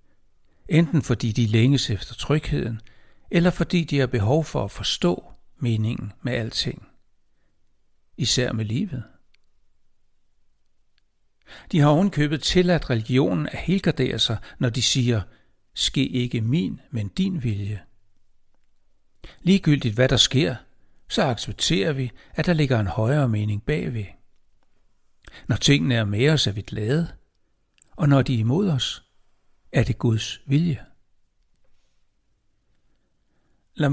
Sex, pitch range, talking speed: male, 110-150 Hz, 125 wpm